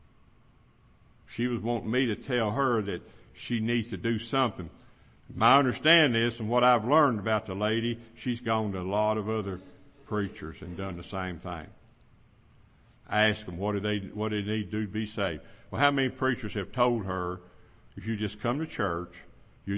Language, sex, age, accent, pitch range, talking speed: English, male, 60-79, American, 100-125 Hz, 195 wpm